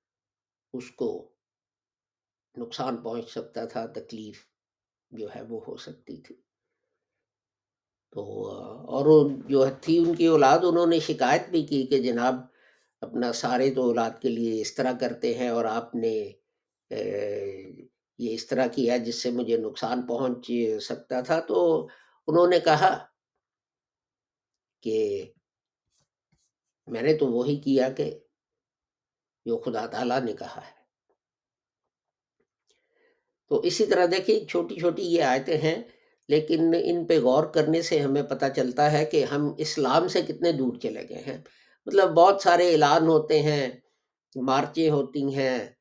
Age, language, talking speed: 50-69, English, 130 wpm